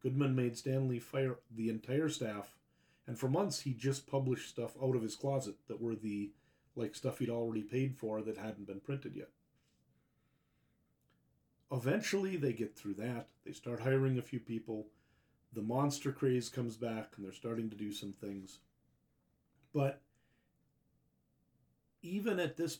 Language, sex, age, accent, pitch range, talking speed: English, male, 40-59, American, 110-140 Hz, 155 wpm